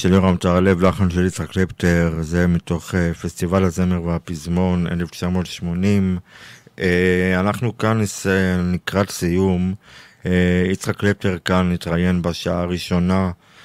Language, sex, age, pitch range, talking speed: Hebrew, male, 50-69, 85-95 Hz, 100 wpm